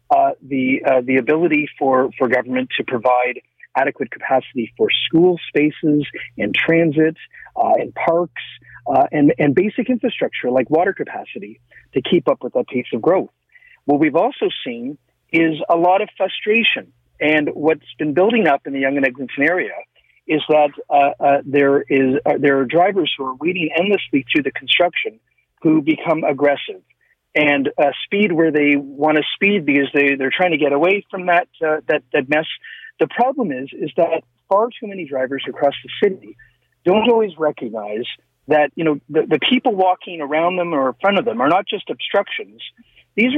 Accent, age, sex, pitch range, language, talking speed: American, 50-69, male, 145-200 Hz, English, 180 wpm